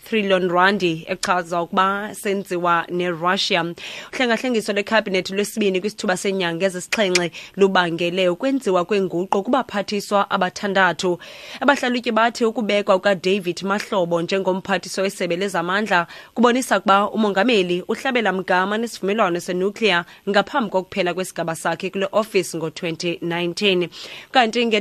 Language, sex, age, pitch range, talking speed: English, female, 20-39, 175-200 Hz, 125 wpm